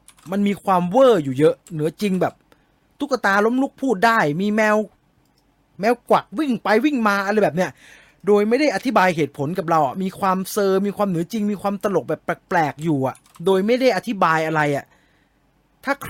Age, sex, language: 30-49, male, English